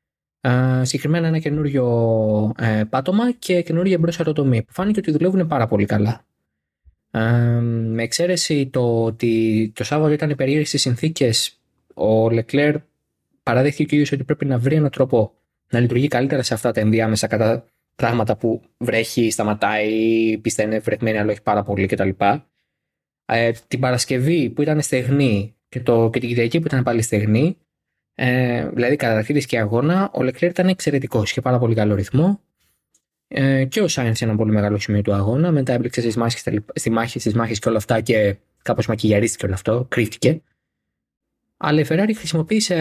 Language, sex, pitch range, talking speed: Greek, male, 110-150 Hz, 155 wpm